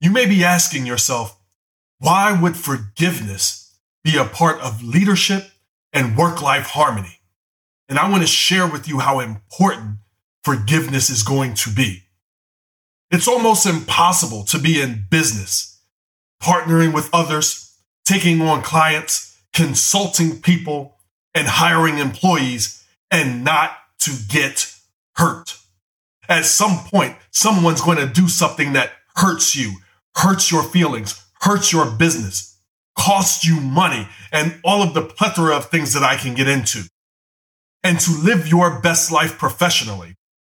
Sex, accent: male, American